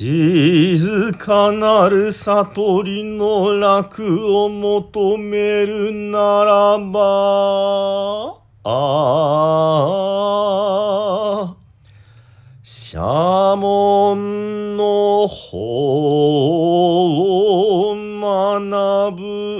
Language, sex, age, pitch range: Japanese, male, 40-59, 145-200 Hz